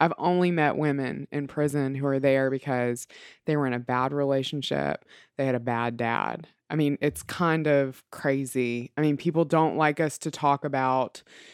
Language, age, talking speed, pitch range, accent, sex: English, 20-39, 185 wpm, 145-185 Hz, American, female